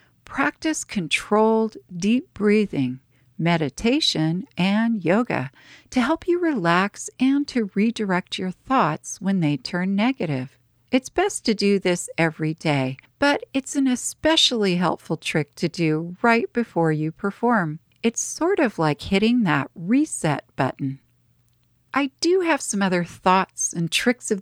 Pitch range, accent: 160-245 Hz, American